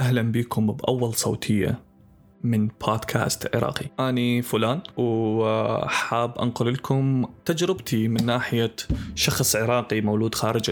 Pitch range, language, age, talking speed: 110-130 Hz, Arabic, 20-39, 105 wpm